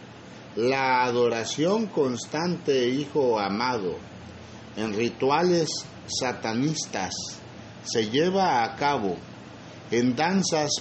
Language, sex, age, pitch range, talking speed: Spanish, male, 50-69, 120-165 Hz, 80 wpm